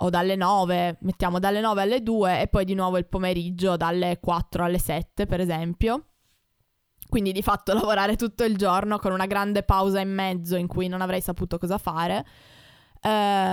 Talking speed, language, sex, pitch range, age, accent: 180 wpm, Italian, female, 175-200 Hz, 20-39, native